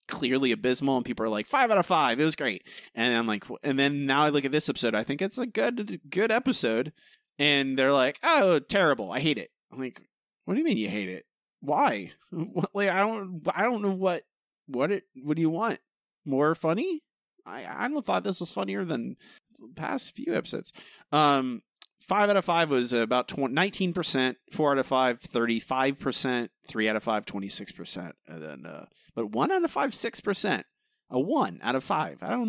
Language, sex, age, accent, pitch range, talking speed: English, male, 30-49, American, 125-195 Hz, 200 wpm